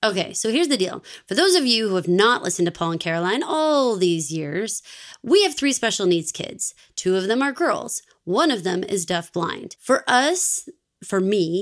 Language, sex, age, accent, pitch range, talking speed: English, female, 20-39, American, 175-230 Hz, 205 wpm